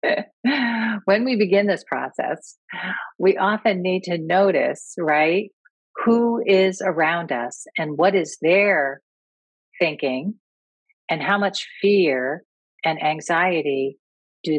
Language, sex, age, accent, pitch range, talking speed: English, female, 40-59, American, 150-195 Hz, 110 wpm